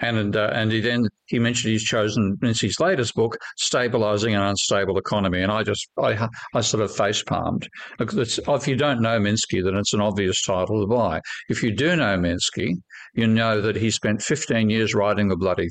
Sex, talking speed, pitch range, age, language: male, 200 wpm, 100-115 Hz, 50-69, English